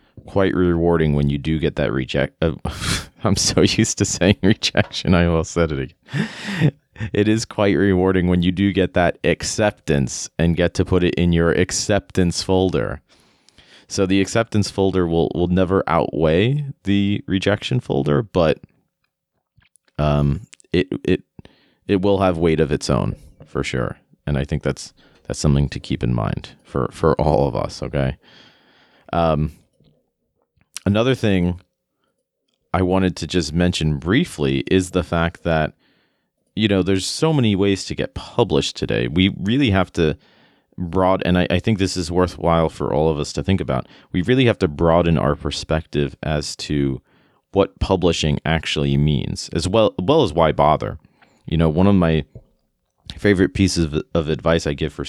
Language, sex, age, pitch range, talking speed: English, male, 30-49, 75-95 Hz, 165 wpm